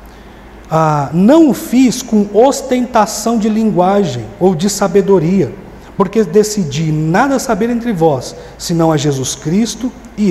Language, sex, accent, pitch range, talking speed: Portuguese, male, Brazilian, 160-210 Hz, 130 wpm